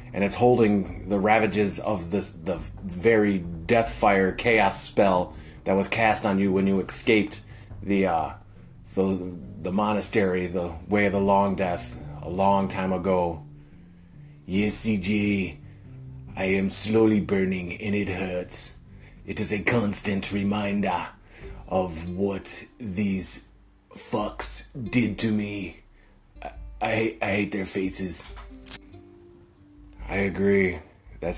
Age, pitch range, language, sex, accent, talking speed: 30-49, 90-105 Hz, English, male, American, 125 wpm